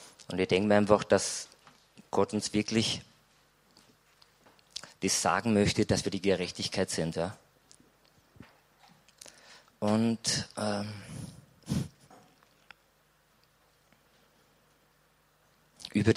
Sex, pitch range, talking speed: male, 95-105 Hz, 75 wpm